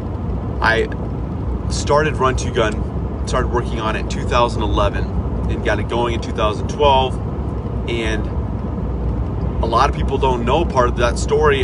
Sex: male